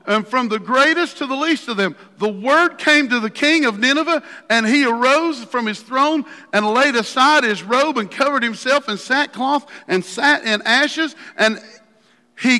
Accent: American